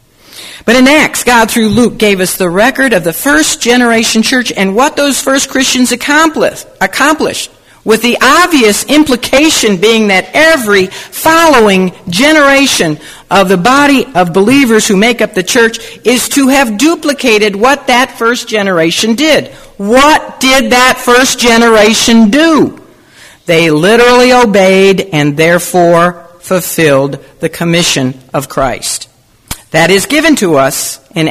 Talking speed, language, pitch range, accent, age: 135 wpm, English, 170-255 Hz, American, 50-69